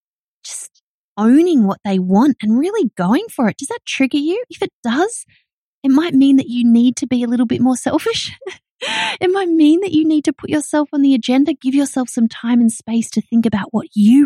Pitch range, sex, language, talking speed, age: 210-275 Hz, female, English, 220 wpm, 20-39